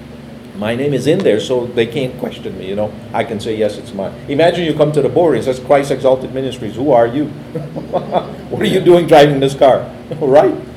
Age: 50-69